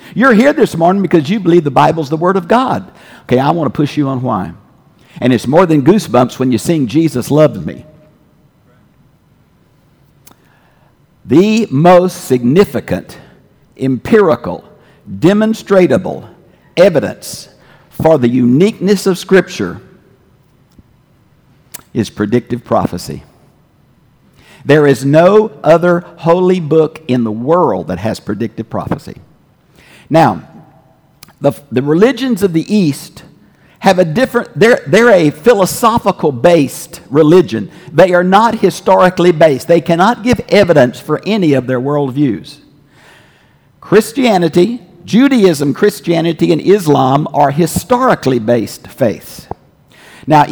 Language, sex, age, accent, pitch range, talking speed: English, male, 50-69, American, 140-190 Hz, 120 wpm